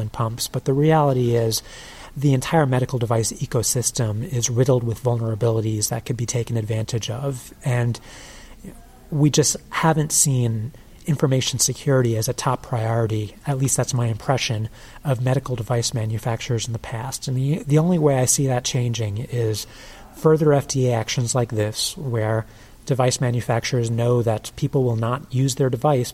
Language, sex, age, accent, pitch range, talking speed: English, male, 30-49, American, 115-135 Hz, 160 wpm